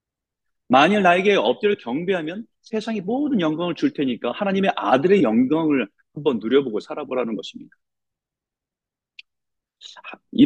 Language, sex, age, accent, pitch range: Korean, male, 40-59, native, 125-200 Hz